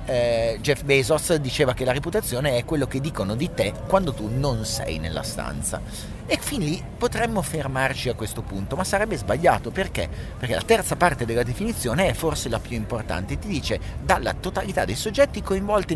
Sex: male